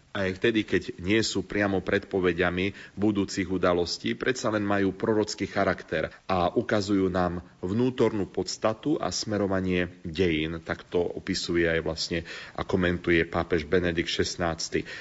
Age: 40-59